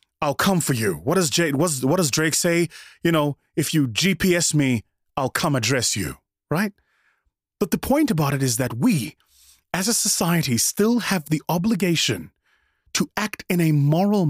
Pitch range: 105-165 Hz